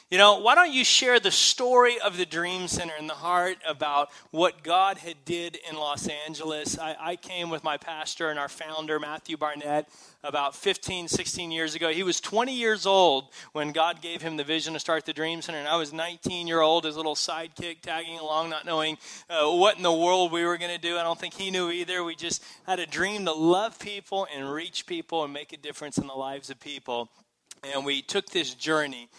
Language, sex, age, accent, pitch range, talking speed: English, male, 30-49, American, 150-185 Hz, 220 wpm